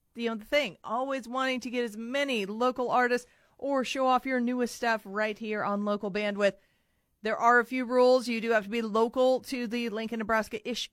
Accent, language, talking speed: American, English, 220 wpm